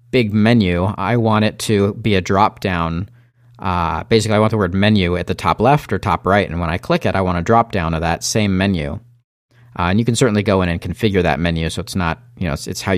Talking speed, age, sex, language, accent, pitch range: 260 wpm, 40-59, male, English, American, 90-115 Hz